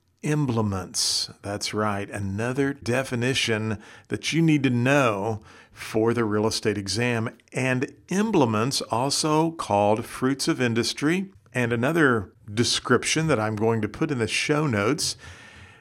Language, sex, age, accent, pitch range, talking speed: English, male, 50-69, American, 110-140 Hz, 130 wpm